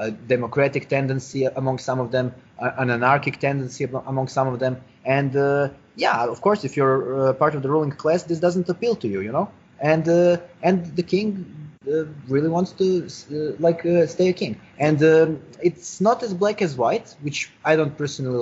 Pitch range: 130-170 Hz